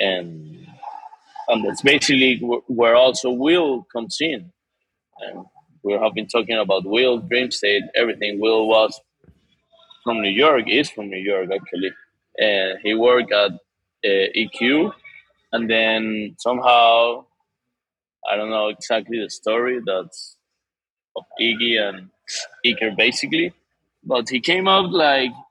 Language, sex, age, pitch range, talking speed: English, male, 20-39, 110-135 Hz, 130 wpm